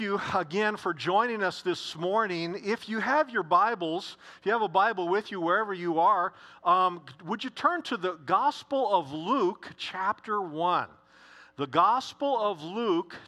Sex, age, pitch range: male, 50-69, 165-215 Hz